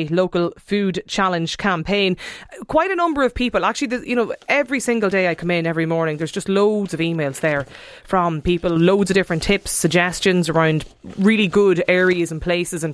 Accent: Irish